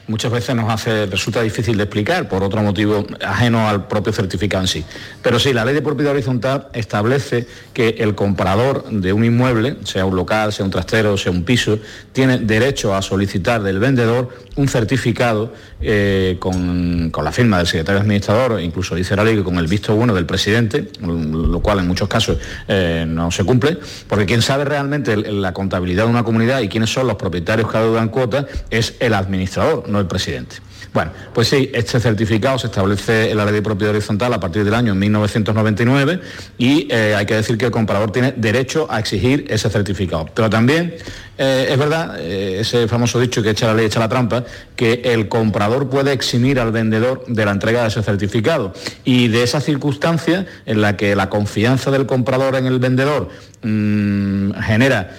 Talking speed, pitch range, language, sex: 190 wpm, 100-120 Hz, Spanish, male